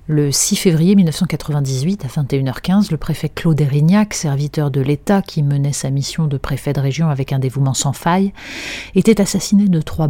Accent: French